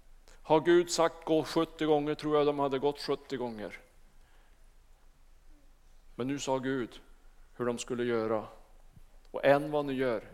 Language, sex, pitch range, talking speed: Swedish, male, 120-150 Hz, 150 wpm